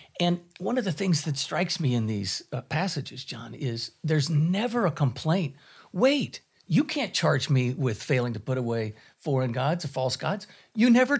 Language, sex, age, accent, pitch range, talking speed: English, male, 50-69, American, 130-170 Hz, 190 wpm